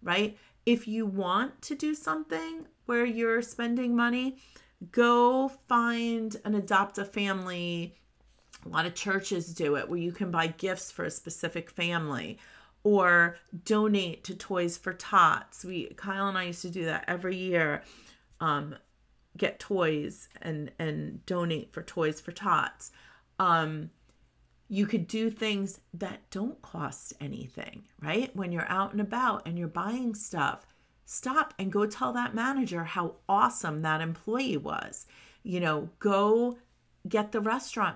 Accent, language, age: American, English, 40-59